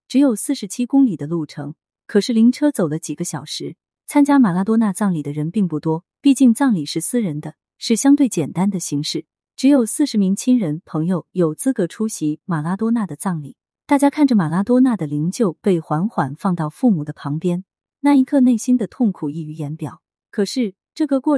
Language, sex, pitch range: Chinese, female, 160-240 Hz